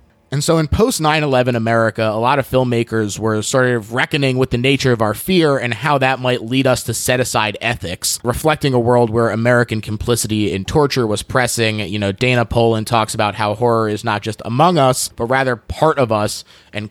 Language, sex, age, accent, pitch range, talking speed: English, male, 20-39, American, 110-135 Hz, 210 wpm